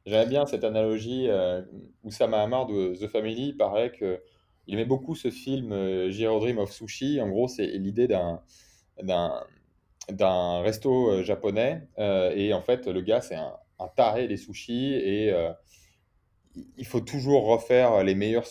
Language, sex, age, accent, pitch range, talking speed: French, male, 20-39, French, 100-130 Hz, 165 wpm